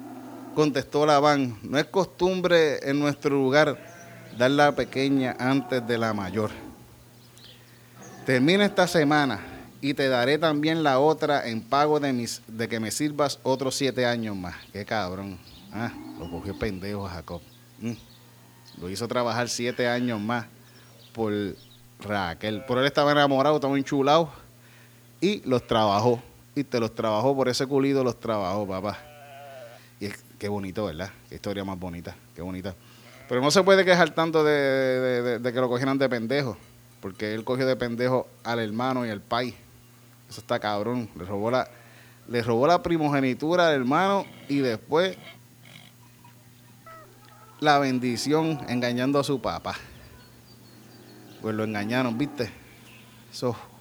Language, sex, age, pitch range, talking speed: Spanish, male, 30-49, 115-140 Hz, 140 wpm